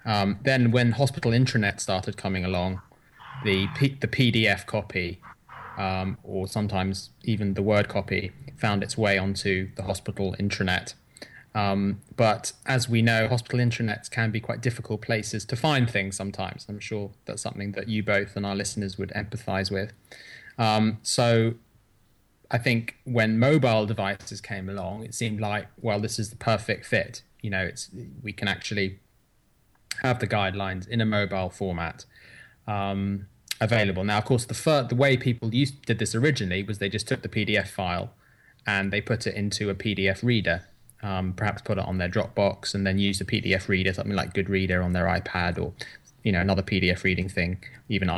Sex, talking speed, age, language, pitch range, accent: male, 180 wpm, 20-39, English, 95-115 Hz, British